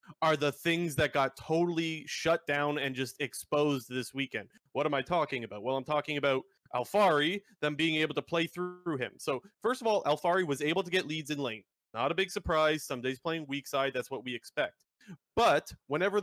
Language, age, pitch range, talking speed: English, 30-49, 135-170 Hz, 210 wpm